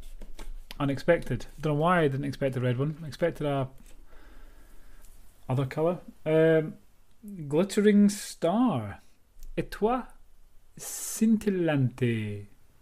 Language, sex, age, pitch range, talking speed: English, male, 30-49, 105-175 Hz, 105 wpm